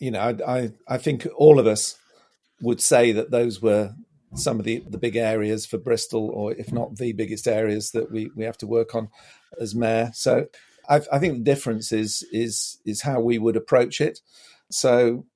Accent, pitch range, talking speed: British, 115-130 Hz, 200 wpm